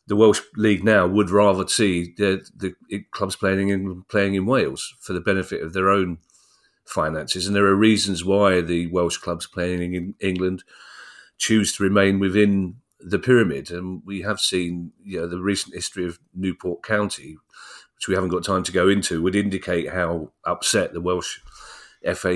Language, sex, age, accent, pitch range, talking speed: English, male, 40-59, British, 90-100 Hz, 175 wpm